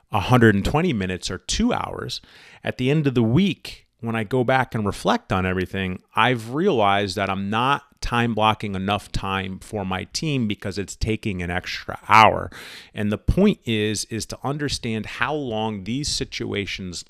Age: 30-49